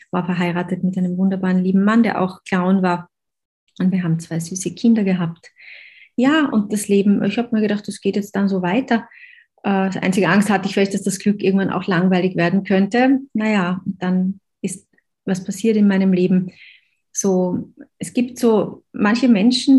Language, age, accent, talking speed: German, 30-49, German, 180 wpm